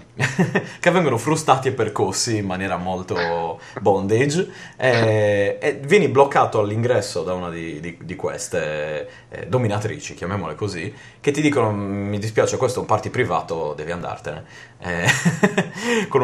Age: 30-49